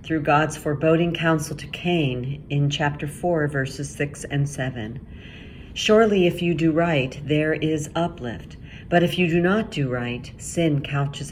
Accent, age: American, 40-59